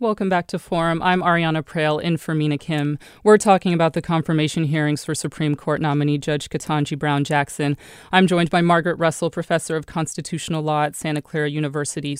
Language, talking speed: English, 180 wpm